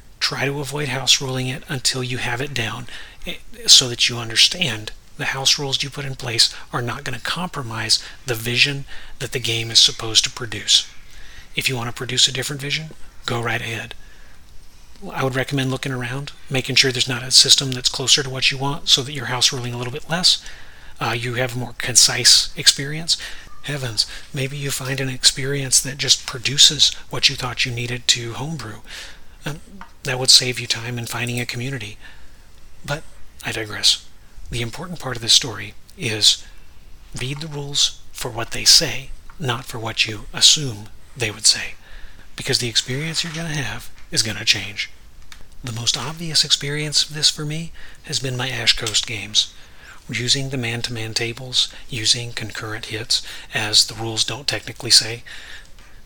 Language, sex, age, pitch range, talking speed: English, male, 40-59, 115-140 Hz, 180 wpm